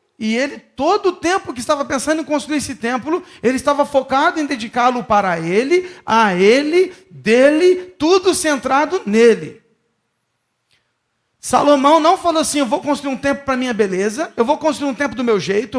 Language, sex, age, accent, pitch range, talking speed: Portuguese, male, 40-59, Brazilian, 235-305 Hz, 175 wpm